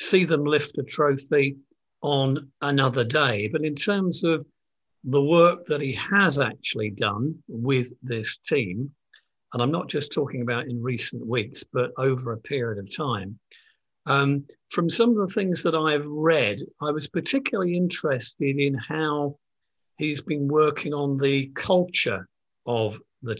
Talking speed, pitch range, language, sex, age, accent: 155 wpm, 135-160 Hz, English, male, 50-69, British